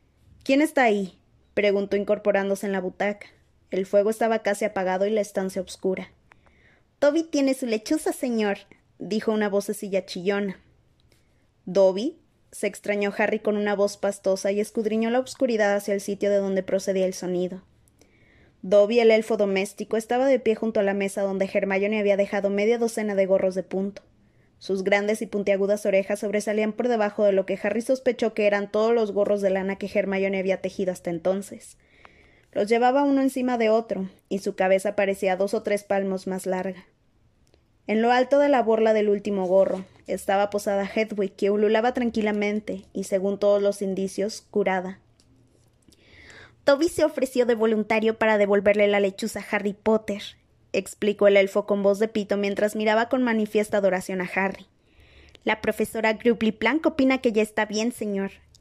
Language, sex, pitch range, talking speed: Spanish, female, 195-220 Hz, 170 wpm